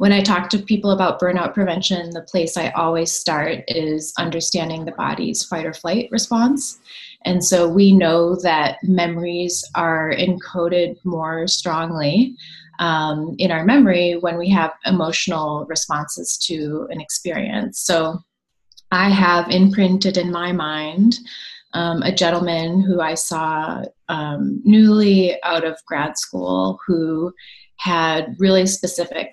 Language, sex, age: English, female, 30-49